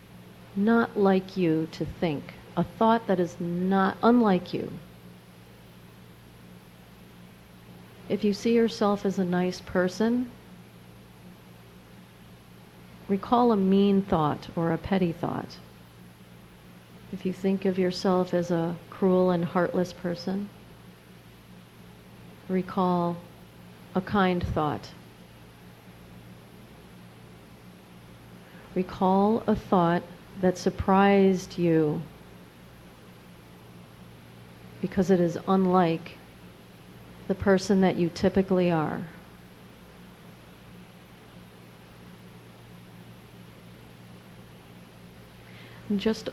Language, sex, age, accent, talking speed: English, female, 50-69, American, 80 wpm